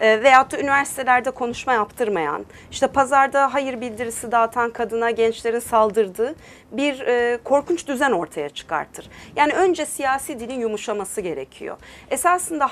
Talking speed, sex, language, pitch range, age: 120 wpm, female, Turkish, 225-285 Hz, 40-59